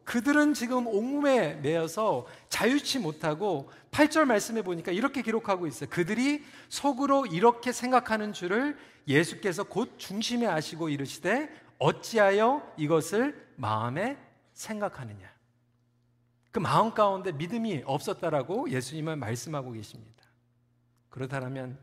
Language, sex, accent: Korean, male, native